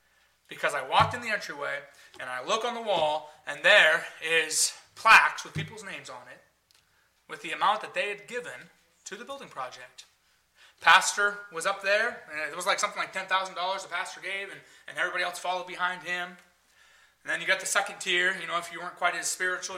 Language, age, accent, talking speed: English, 30-49, American, 205 wpm